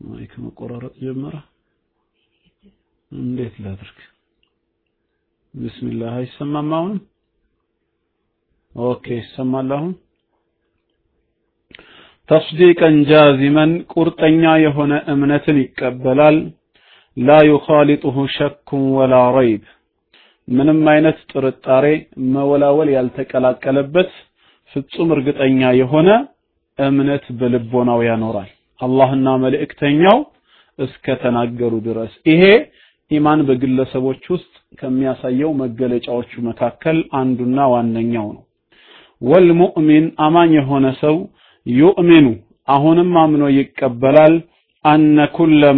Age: 40-59